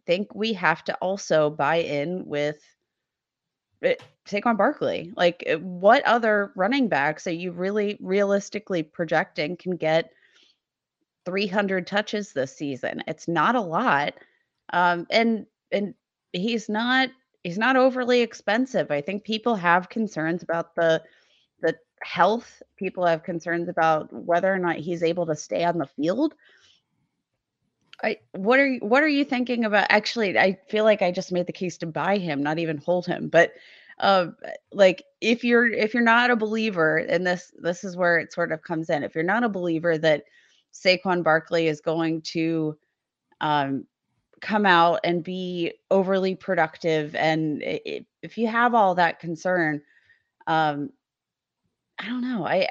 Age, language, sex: 30-49, English, female